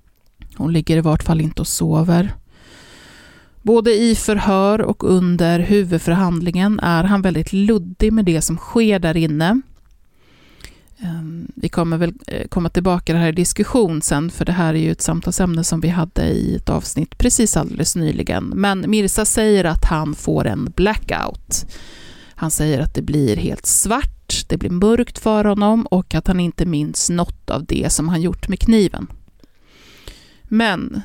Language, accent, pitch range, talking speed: Swedish, native, 165-205 Hz, 165 wpm